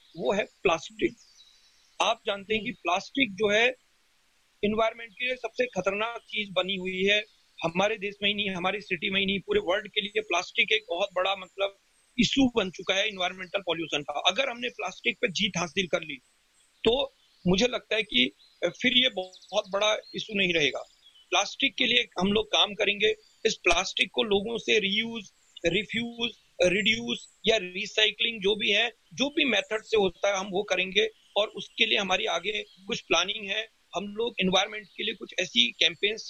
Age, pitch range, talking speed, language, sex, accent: 40-59, 190-225 Hz, 180 wpm, Hindi, male, native